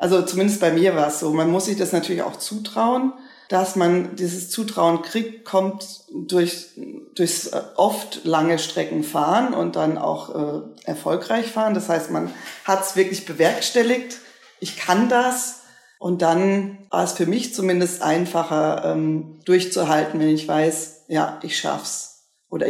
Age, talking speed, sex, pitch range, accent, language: 40-59, 155 wpm, female, 165-200 Hz, German, German